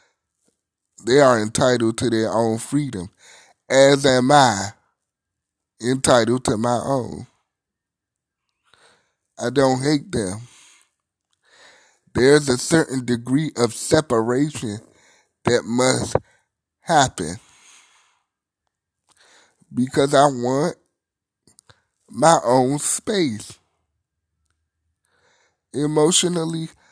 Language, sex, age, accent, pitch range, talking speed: English, male, 30-49, American, 110-150 Hz, 75 wpm